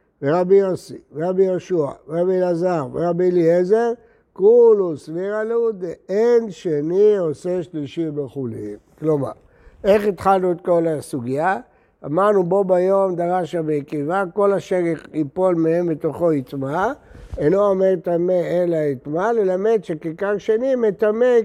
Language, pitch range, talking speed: Hebrew, 165-215 Hz, 120 wpm